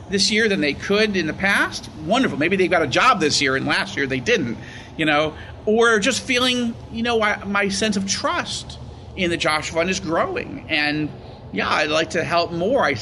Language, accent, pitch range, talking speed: English, American, 125-195 Hz, 210 wpm